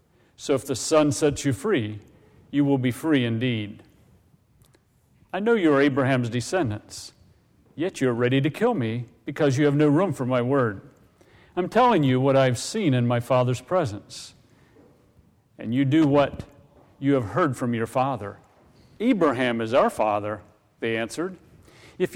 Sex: male